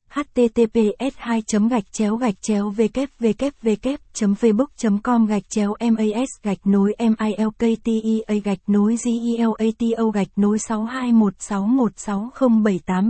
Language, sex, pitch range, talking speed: Vietnamese, female, 200-235 Hz, 125 wpm